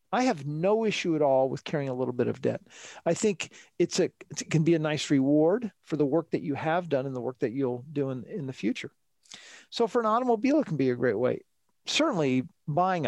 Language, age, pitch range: English, 40-59, 140-180 Hz